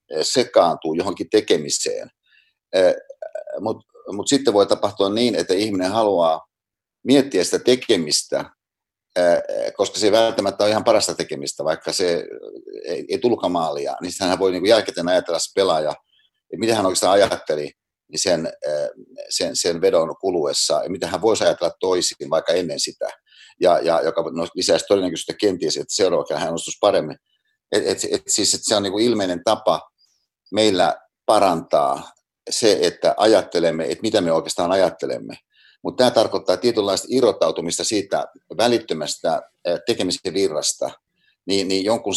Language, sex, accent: Finnish, male, native